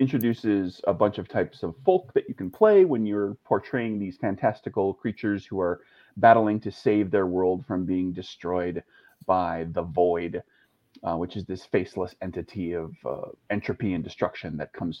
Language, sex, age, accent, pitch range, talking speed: English, male, 30-49, American, 90-120 Hz, 170 wpm